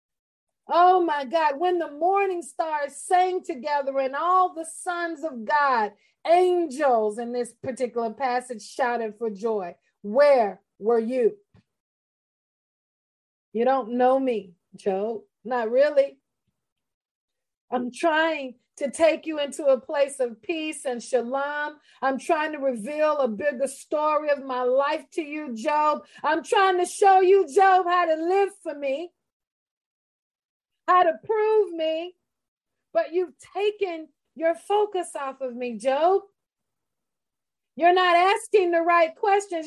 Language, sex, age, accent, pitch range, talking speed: English, female, 40-59, American, 275-375 Hz, 135 wpm